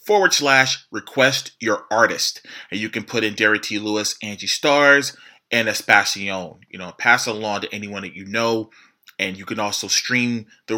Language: English